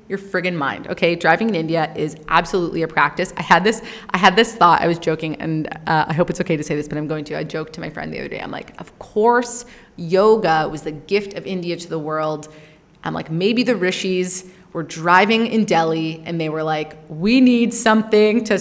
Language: English